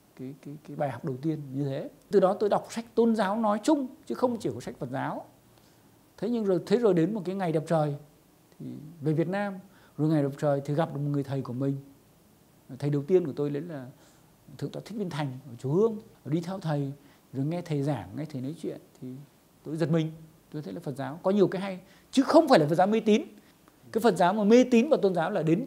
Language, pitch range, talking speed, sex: Vietnamese, 150-205 Hz, 255 wpm, male